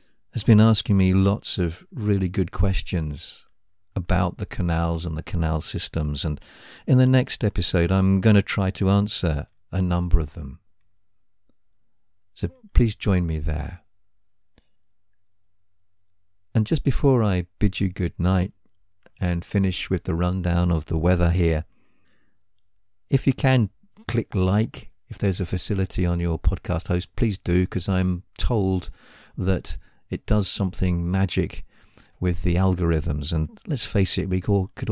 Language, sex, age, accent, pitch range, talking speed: English, male, 50-69, British, 85-100 Hz, 145 wpm